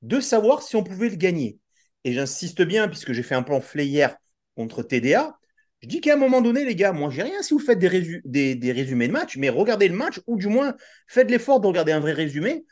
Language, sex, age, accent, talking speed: French, male, 40-59, French, 255 wpm